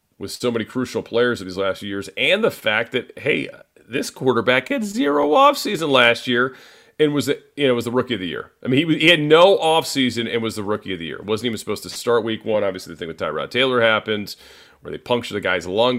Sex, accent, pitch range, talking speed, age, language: male, American, 90-120 Hz, 255 wpm, 40-59, English